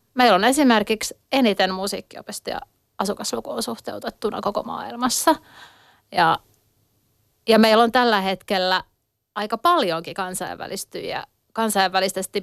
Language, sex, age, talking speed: Finnish, female, 30-49, 90 wpm